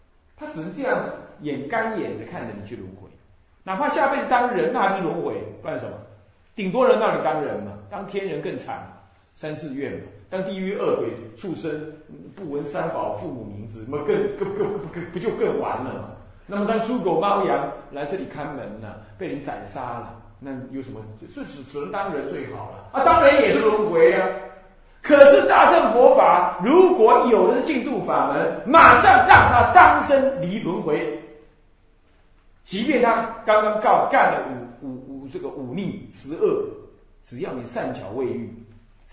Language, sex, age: Chinese, male, 30-49